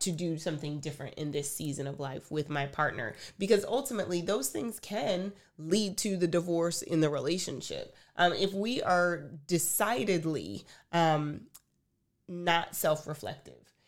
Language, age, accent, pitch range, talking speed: English, 30-49, American, 155-190 Hz, 140 wpm